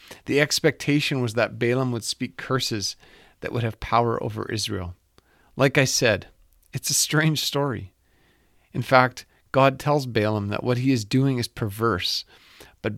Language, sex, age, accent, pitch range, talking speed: English, male, 40-59, American, 105-135 Hz, 155 wpm